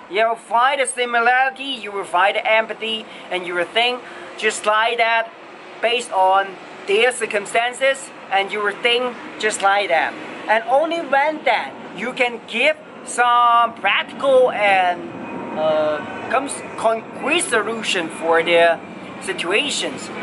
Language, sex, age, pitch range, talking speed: English, male, 30-49, 205-275 Hz, 120 wpm